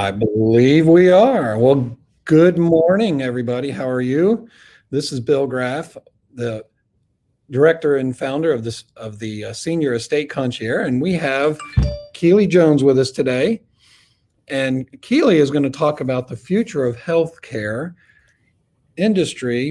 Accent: American